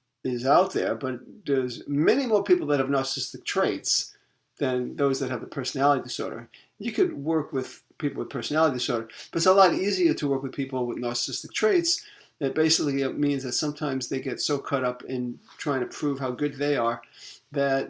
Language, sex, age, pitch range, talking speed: English, male, 40-59, 130-165 Hz, 195 wpm